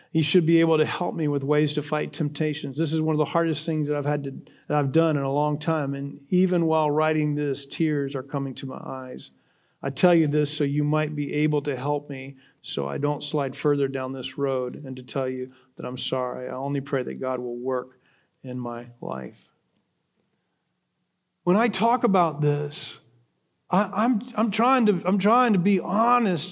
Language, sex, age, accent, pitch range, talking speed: English, male, 40-59, American, 150-235 Hz, 210 wpm